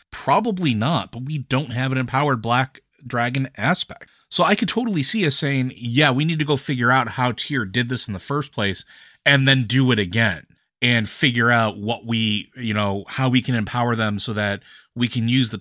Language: English